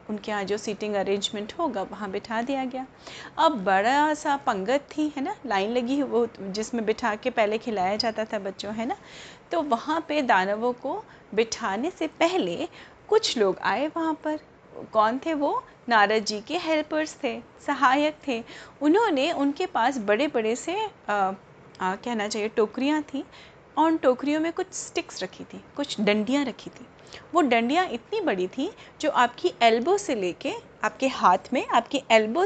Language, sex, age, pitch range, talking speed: Hindi, female, 30-49, 220-305 Hz, 165 wpm